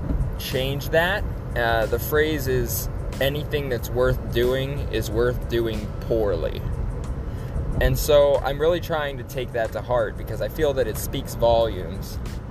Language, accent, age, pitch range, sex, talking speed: English, American, 20-39, 105-125 Hz, male, 150 wpm